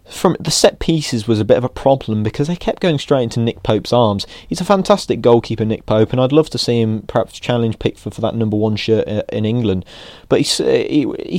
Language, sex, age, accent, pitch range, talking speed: English, male, 20-39, British, 100-120 Hz, 225 wpm